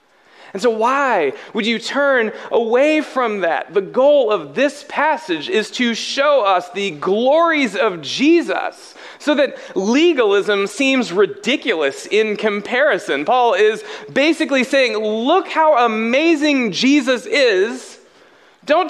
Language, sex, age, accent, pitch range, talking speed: English, male, 30-49, American, 195-300 Hz, 125 wpm